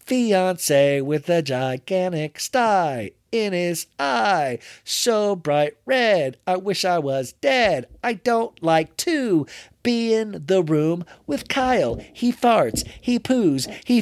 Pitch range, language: 115-175 Hz, English